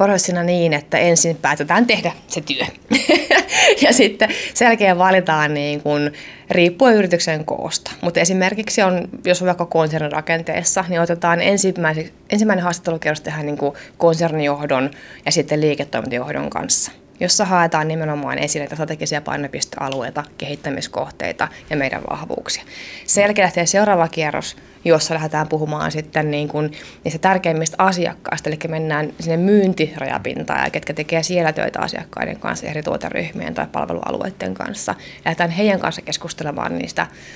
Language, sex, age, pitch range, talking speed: Finnish, female, 20-39, 150-180 Hz, 130 wpm